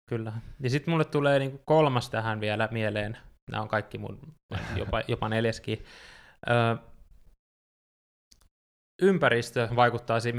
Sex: male